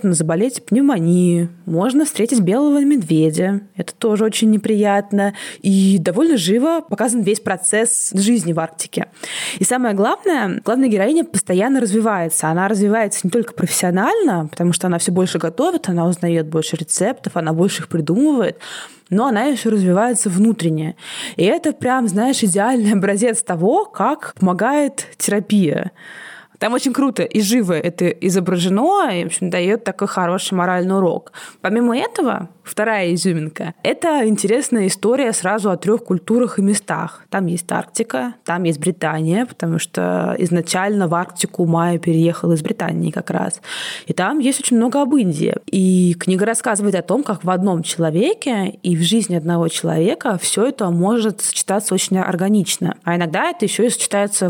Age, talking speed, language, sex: 20-39, 150 wpm, Russian, female